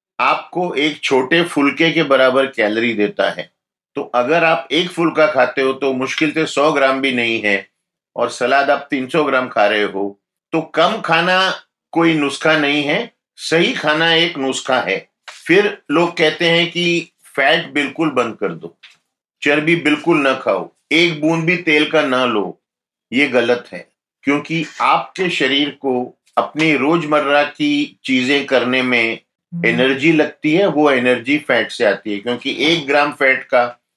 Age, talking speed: 50-69, 165 wpm